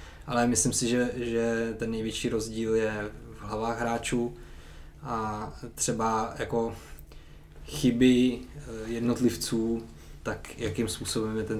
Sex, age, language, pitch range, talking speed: male, 20-39, Czech, 100-115 Hz, 115 wpm